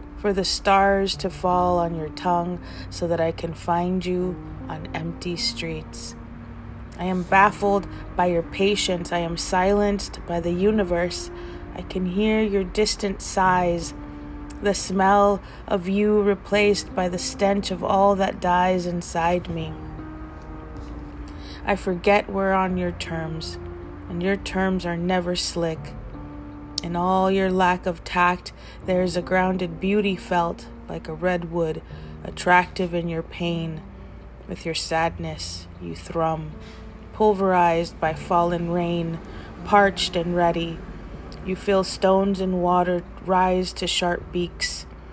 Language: English